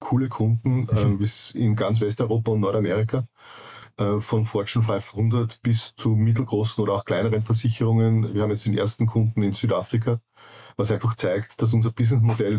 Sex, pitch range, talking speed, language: male, 110-120 Hz, 160 wpm, German